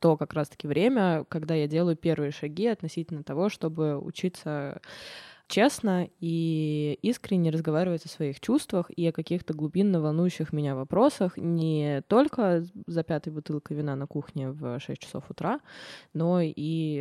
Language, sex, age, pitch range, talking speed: Russian, female, 20-39, 150-175 Hz, 145 wpm